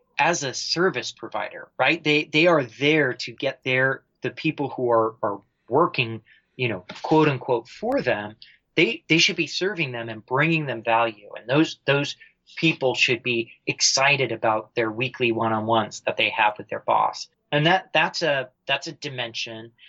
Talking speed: 175 wpm